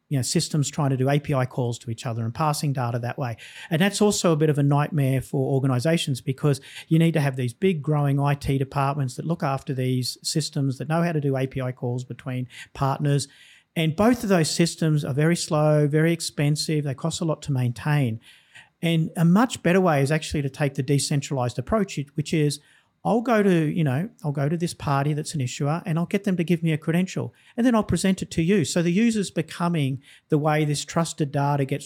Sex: male